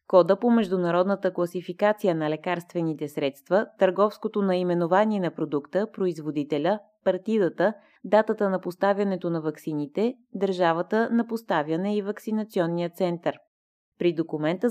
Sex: female